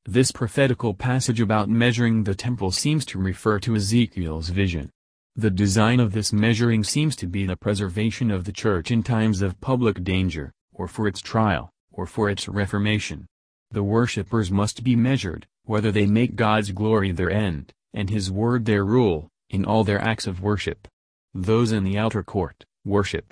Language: English